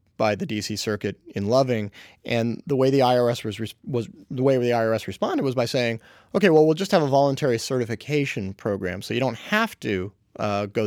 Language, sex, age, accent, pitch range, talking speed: English, male, 30-49, American, 110-140 Hz, 205 wpm